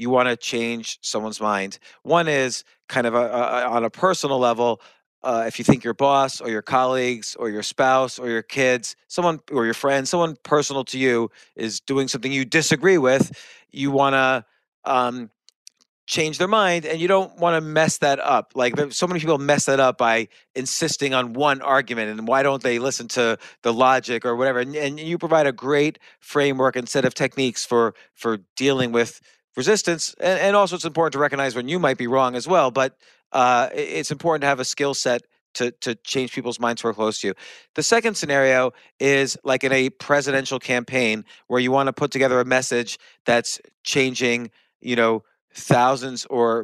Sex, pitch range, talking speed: male, 120-145 Hz, 200 wpm